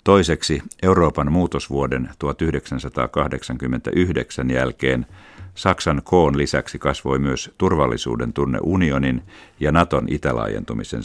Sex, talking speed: male, 85 wpm